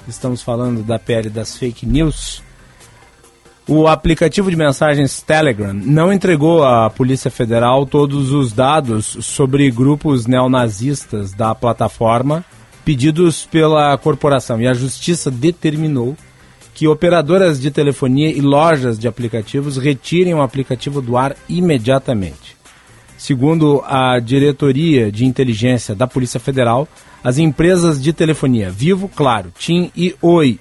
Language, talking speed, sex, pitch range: Portuguese, 125 wpm, male, 125-155 Hz